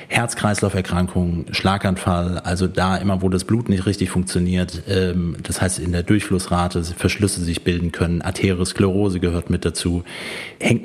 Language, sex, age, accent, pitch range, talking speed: German, male, 30-49, German, 90-105 Hz, 140 wpm